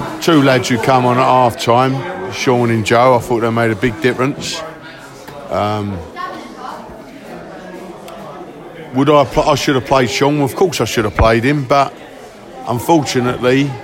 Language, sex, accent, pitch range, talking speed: English, male, British, 115-145 Hz, 155 wpm